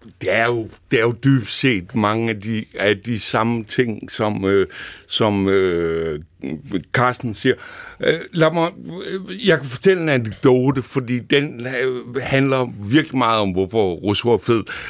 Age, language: 60-79, Danish